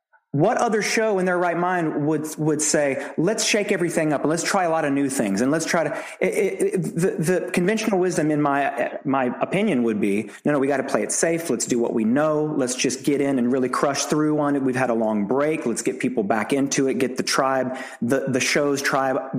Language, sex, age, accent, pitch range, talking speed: English, male, 30-49, American, 135-165 Hz, 250 wpm